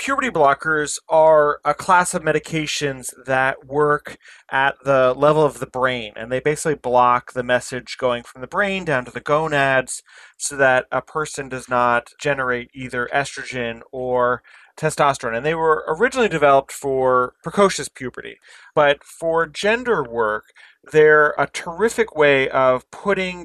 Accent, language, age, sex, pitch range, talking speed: American, English, 30-49, male, 130-155 Hz, 150 wpm